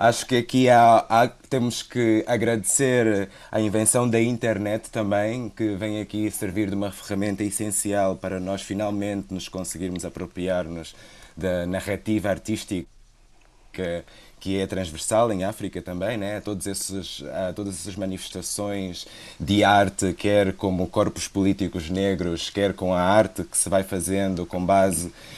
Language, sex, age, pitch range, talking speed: Portuguese, male, 20-39, 95-115 Hz, 140 wpm